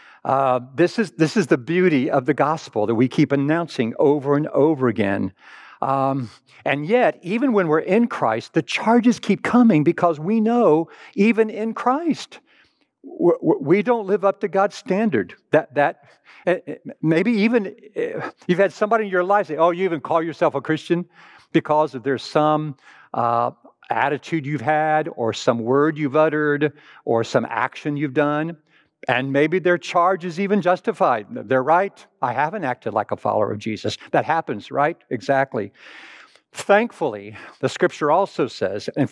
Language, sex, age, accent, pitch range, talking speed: English, male, 60-79, American, 135-190 Hz, 160 wpm